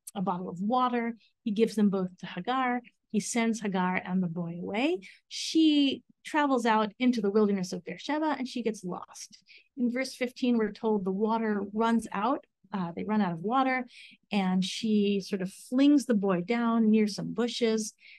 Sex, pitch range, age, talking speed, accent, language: female, 195-250 Hz, 30-49, 180 wpm, American, English